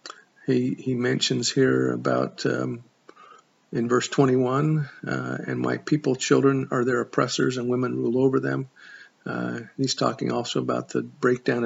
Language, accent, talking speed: English, American, 150 wpm